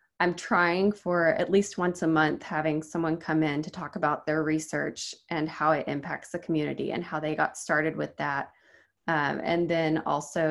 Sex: female